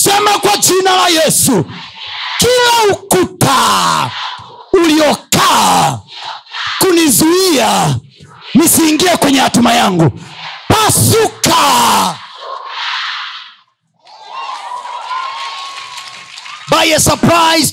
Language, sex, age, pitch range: Swahili, male, 50-69, 280-405 Hz